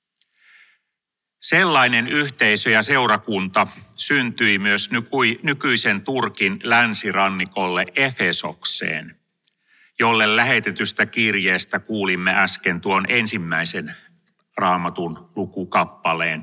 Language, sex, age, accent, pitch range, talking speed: Finnish, male, 40-59, native, 105-135 Hz, 70 wpm